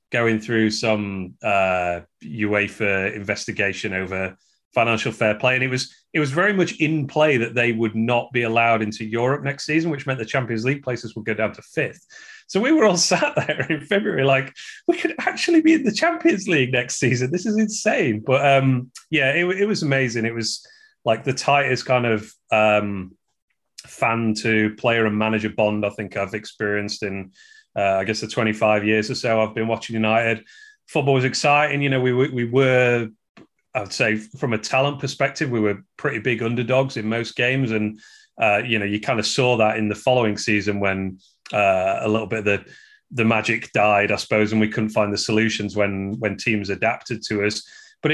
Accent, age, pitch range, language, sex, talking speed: British, 30-49, 110-135 Hz, English, male, 200 wpm